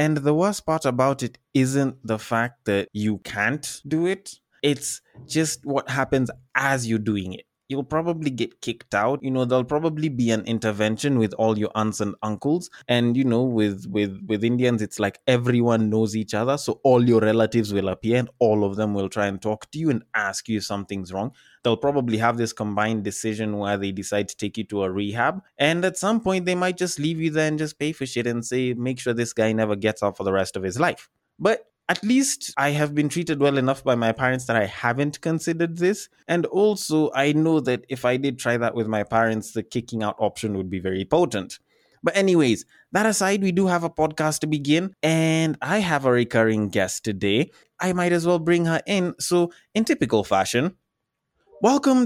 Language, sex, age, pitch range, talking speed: English, male, 20-39, 110-160 Hz, 215 wpm